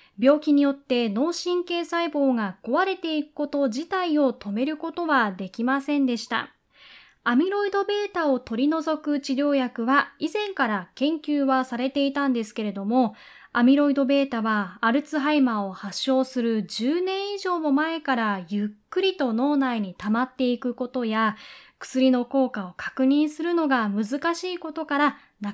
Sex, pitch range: female, 235-300 Hz